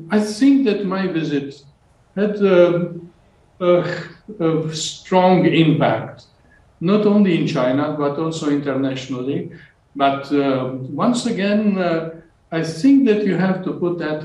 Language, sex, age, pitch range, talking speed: English, male, 60-79, 140-175 Hz, 130 wpm